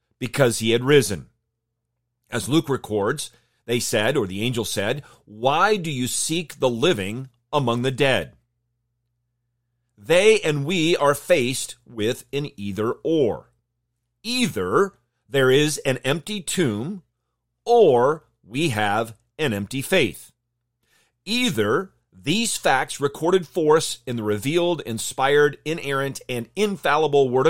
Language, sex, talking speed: English, male, 125 wpm